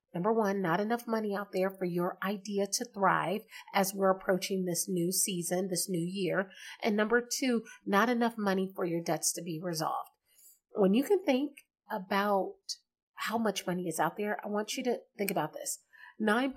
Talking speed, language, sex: 185 wpm, English, female